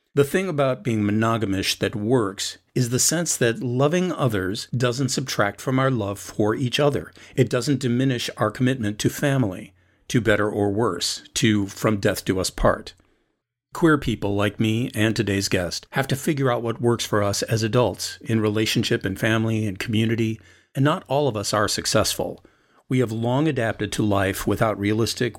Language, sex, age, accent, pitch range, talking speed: English, male, 50-69, American, 105-130 Hz, 180 wpm